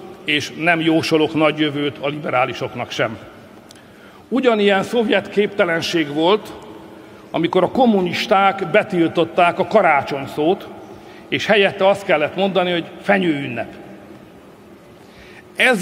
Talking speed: 105 wpm